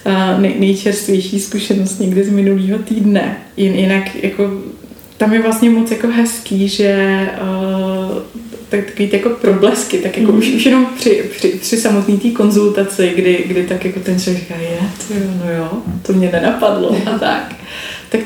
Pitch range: 175-205 Hz